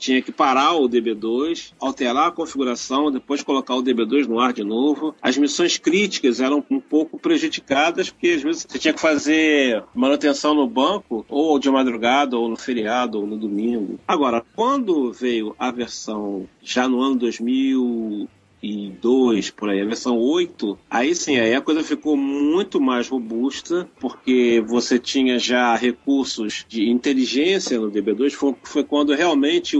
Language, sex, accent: English, male, Brazilian